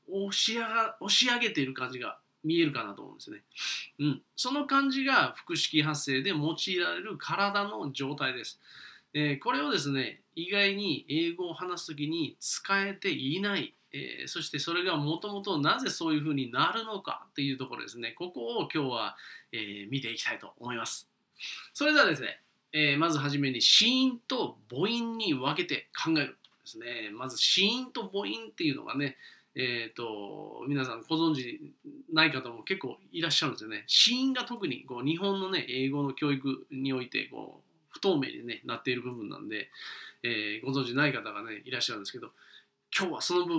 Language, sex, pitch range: Japanese, male, 135-205 Hz